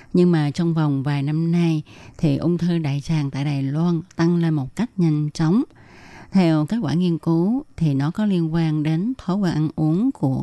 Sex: female